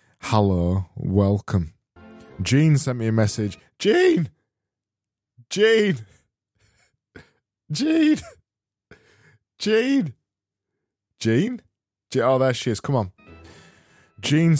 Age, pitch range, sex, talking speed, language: 20-39, 100-130 Hz, male, 80 wpm, English